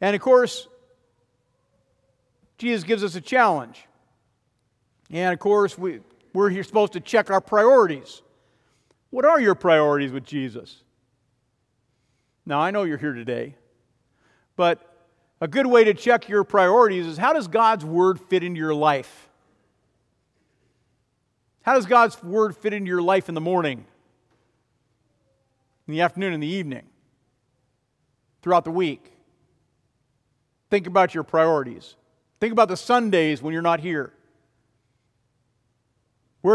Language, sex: English, male